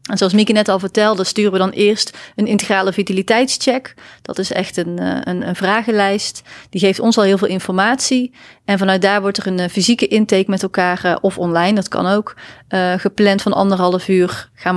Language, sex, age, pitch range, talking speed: English, female, 30-49, 190-215 Hz, 195 wpm